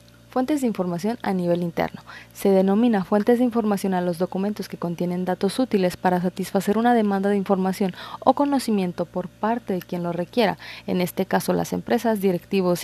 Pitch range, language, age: 180-215 Hz, Spanish, 30-49